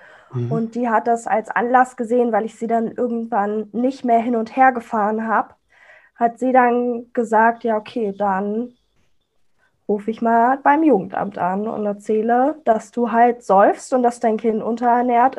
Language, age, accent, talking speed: German, 20-39, German, 170 wpm